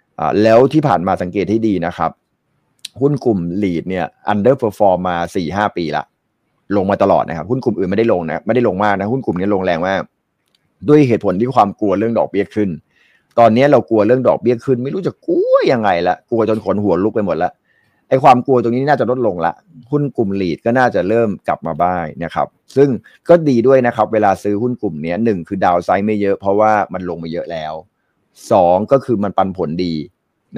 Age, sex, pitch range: 30-49, male, 90-120 Hz